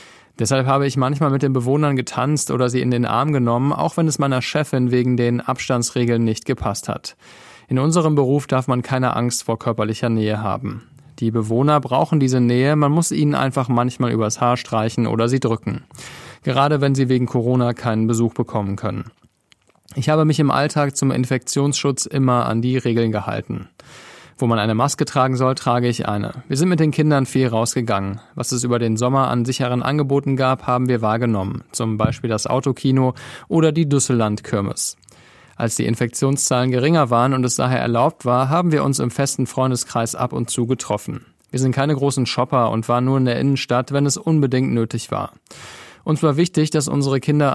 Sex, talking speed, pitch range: male, 190 wpm, 120-140 Hz